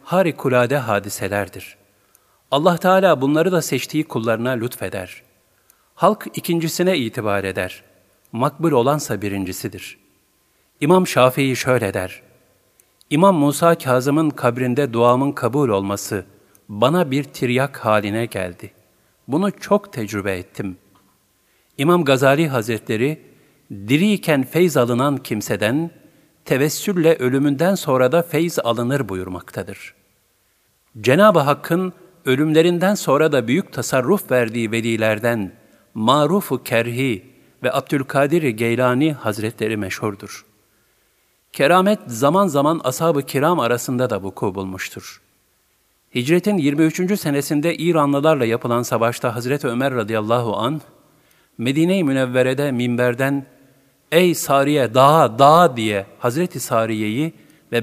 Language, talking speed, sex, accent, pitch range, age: Turkish, 100 wpm, male, native, 110-155 Hz, 50-69